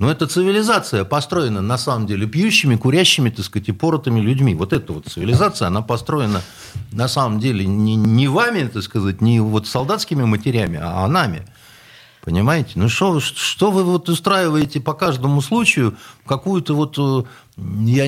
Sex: male